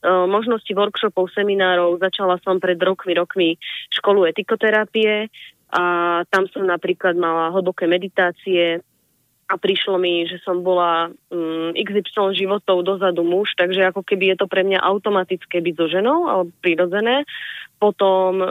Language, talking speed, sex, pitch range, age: Slovak, 135 wpm, female, 175-205 Hz, 20-39